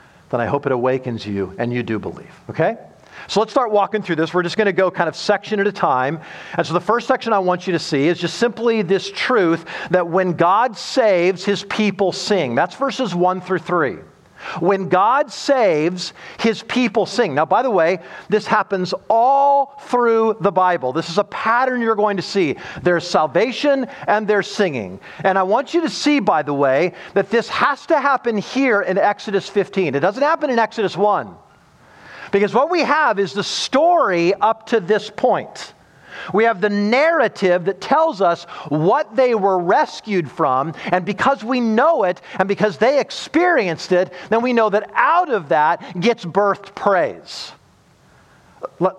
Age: 40-59